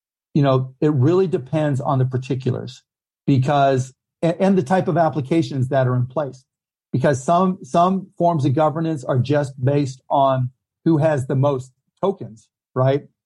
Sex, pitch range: male, 130-155 Hz